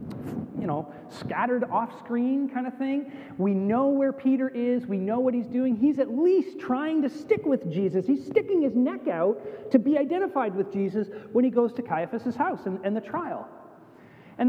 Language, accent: English, American